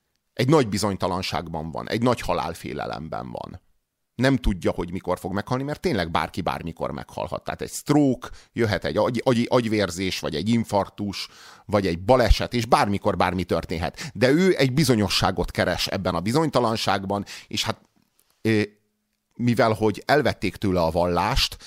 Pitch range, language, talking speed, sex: 95-125 Hz, Hungarian, 145 wpm, male